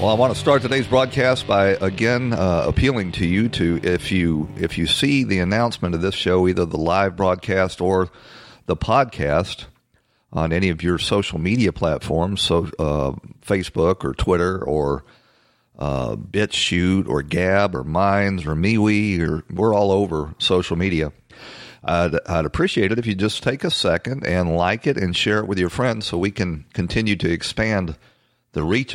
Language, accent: English, American